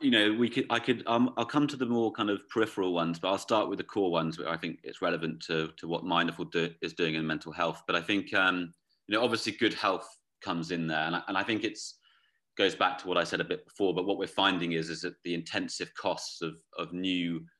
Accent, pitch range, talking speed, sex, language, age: British, 80-90 Hz, 265 wpm, male, English, 30-49